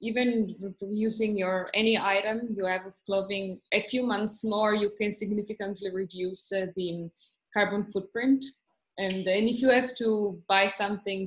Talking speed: 155 wpm